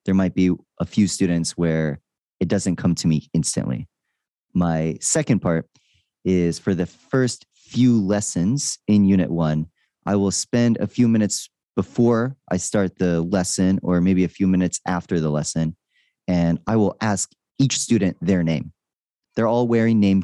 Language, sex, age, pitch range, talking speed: English, male, 30-49, 85-105 Hz, 165 wpm